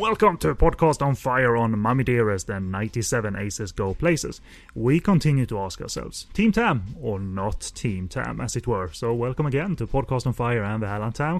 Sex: male